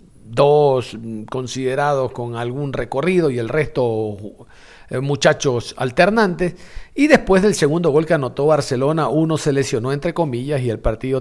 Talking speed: 140 wpm